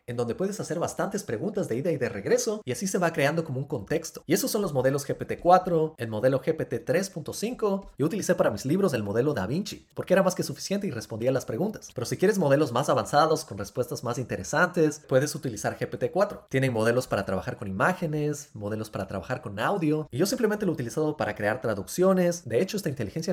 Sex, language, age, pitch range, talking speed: male, Spanish, 30-49, 125-185 Hz, 215 wpm